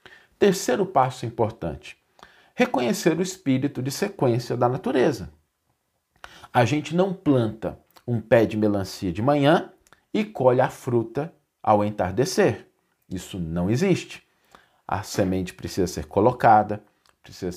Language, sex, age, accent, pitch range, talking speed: Portuguese, male, 40-59, Brazilian, 100-170 Hz, 120 wpm